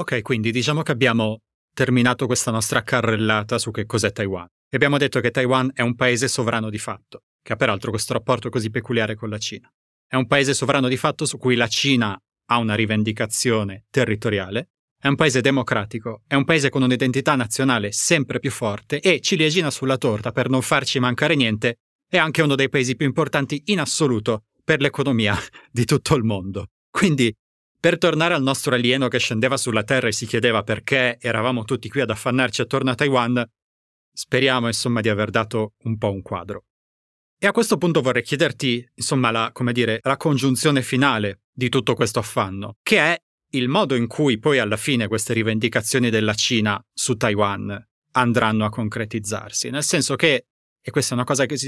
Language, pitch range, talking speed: Italian, 110-135 Hz, 185 wpm